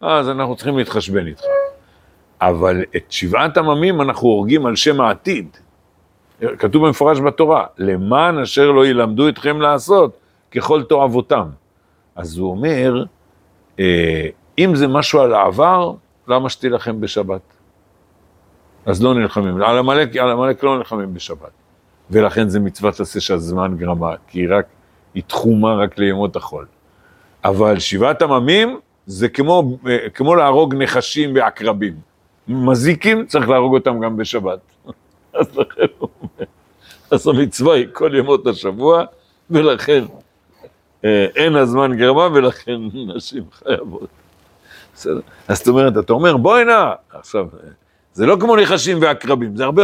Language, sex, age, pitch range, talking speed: Hebrew, male, 50-69, 100-150 Hz, 125 wpm